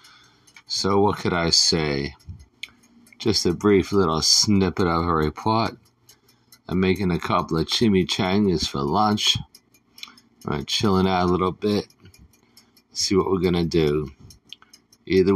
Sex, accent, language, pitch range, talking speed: male, American, English, 80-105 Hz, 135 wpm